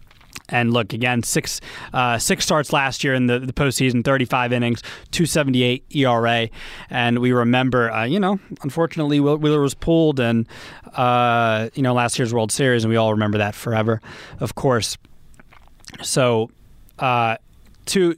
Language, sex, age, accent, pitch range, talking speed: English, male, 20-39, American, 115-150 Hz, 155 wpm